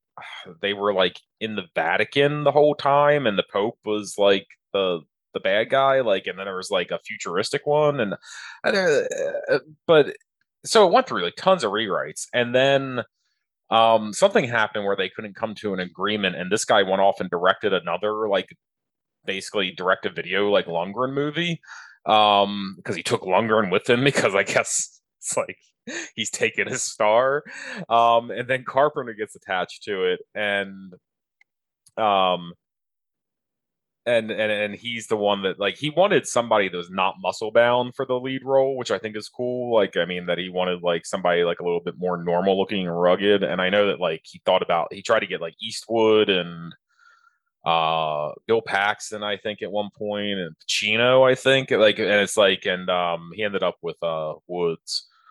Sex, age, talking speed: male, 20-39, 190 wpm